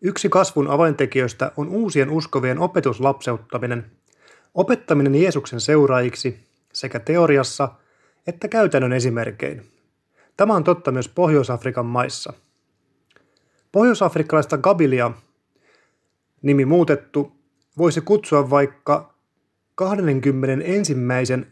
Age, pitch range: 30-49, 130-165 Hz